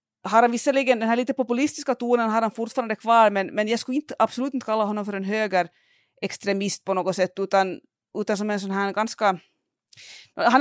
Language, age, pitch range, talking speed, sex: Swedish, 30-49, 195-250 Hz, 205 wpm, female